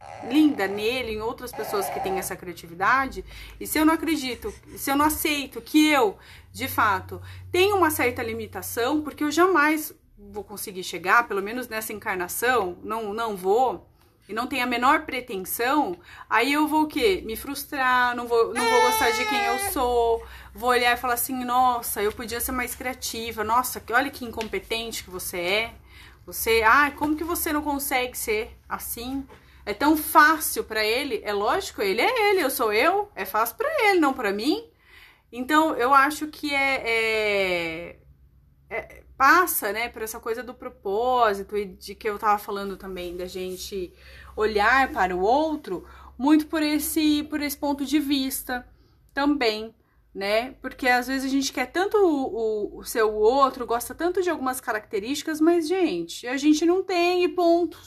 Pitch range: 225-310 Hz